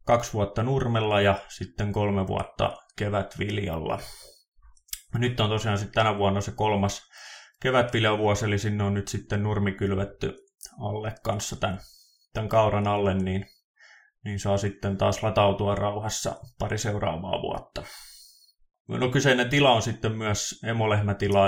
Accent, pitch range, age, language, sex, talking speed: native, 100-110 Hz, 20-39, Finnish, male, 130 wpm